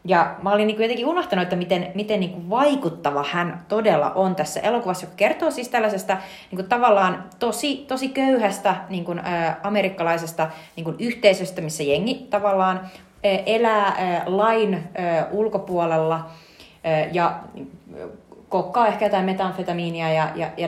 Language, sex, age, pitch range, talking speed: Finnish, female, 30-49, 155-200 Hz, 135 wpm